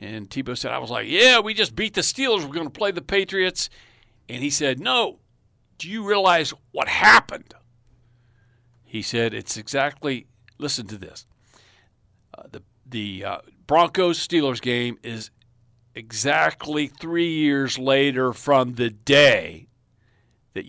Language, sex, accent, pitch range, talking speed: English, male, American, 115-170 Hz, 145 wpm